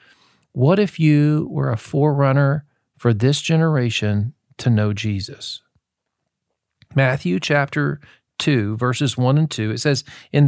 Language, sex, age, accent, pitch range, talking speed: English, male, 50-69, American, 130-165 Hz, 125 wpm